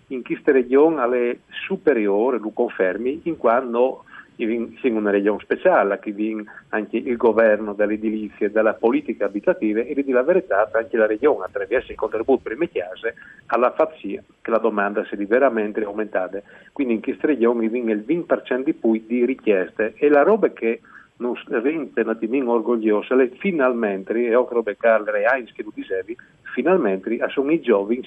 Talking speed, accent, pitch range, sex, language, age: 165 wpm, native, 110-155 Hz, male, Italian, 40-59